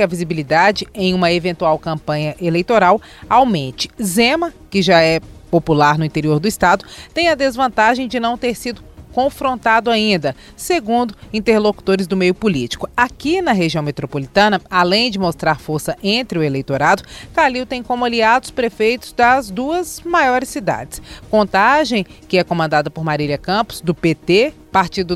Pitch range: 170-245 Hz